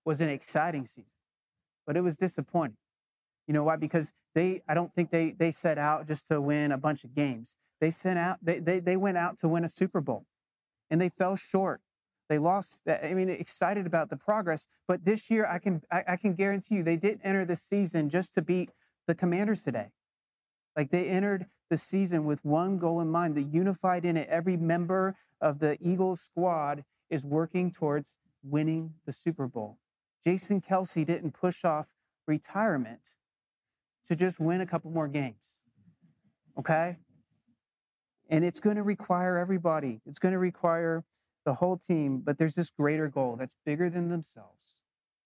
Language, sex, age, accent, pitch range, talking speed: English, male, 30-49, American, 145-180 Hz, 180 wpm